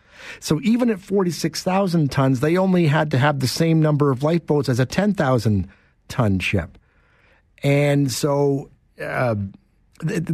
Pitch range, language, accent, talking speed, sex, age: 105-145 Hz, English, American, 155 wpm, male, 50-69